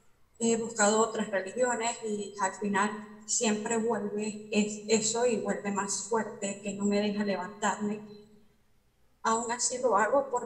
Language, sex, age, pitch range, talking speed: Spanish, female, 30-49, 205-235 Hz, 140 wpm